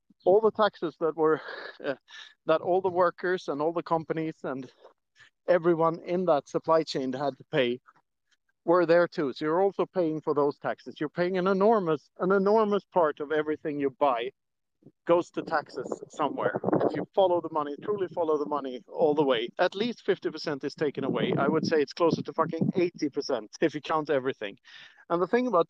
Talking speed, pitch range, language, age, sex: 190 wpm, 140-180 Hz, English, 50-69, male